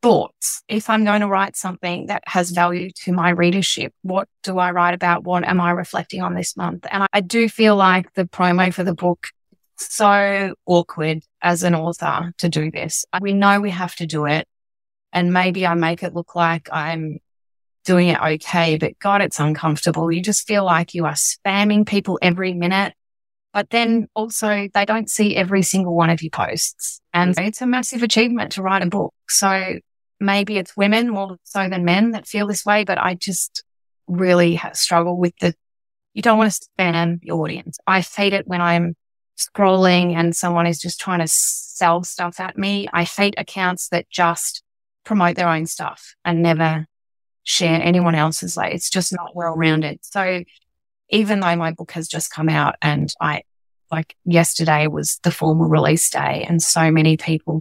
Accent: Australian